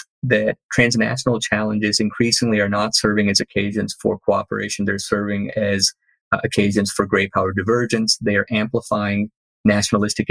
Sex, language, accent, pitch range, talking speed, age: male, English, American, 105-120 Hz, 140 wpm, 30-49